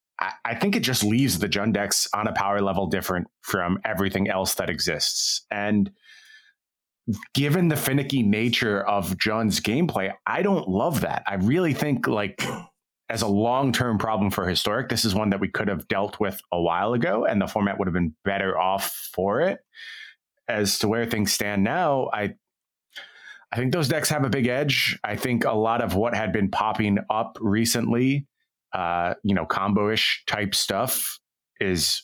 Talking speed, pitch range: 180 wpm, 100-115 Hz